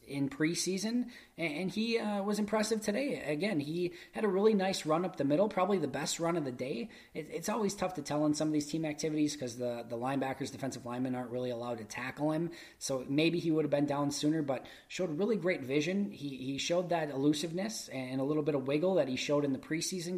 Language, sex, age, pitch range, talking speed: English, male, 20-39, 125-155 Hz, 235 wpm